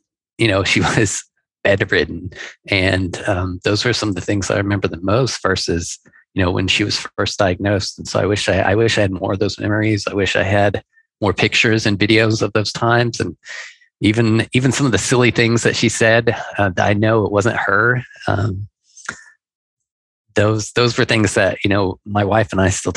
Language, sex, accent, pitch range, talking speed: English, male, American, 100-115 Hz, 205 wpm